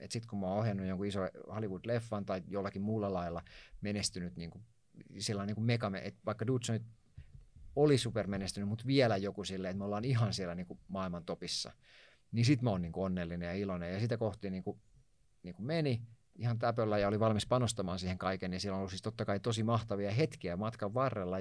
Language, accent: Finnish, native